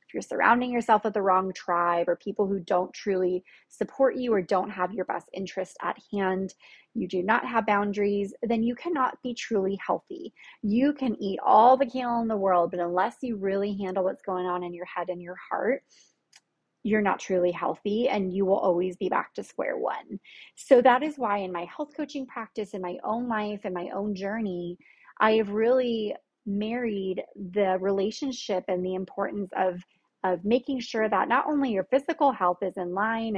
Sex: female